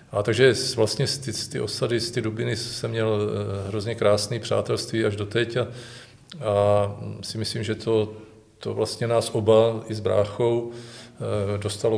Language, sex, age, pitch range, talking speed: Czech, male, 40-59, 105-120 Hz, 165 wpm